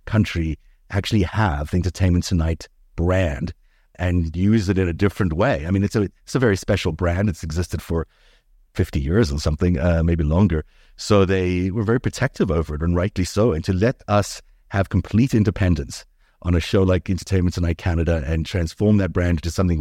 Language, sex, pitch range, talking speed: English, male, 85-110 Hz, 190 wpm